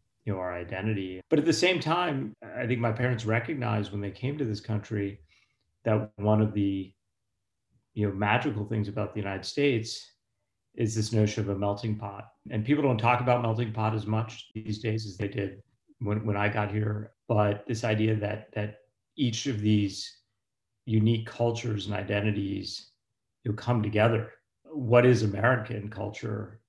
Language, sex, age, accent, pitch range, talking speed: English, male, 40-59, American, 105-115 Hz, 175 wpm